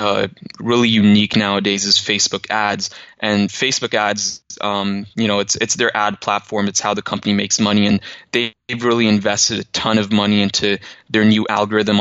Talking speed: 175 wpm